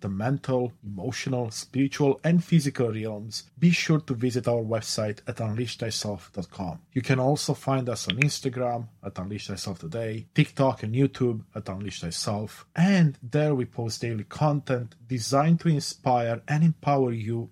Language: English